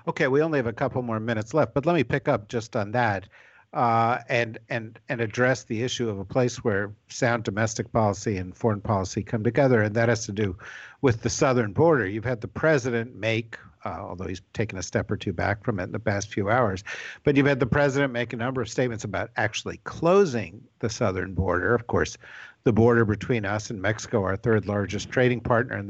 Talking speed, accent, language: 220 wpm, American, English